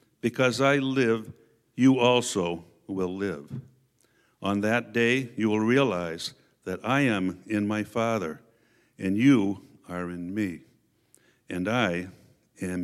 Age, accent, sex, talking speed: 60-79, American, male, 125 wpm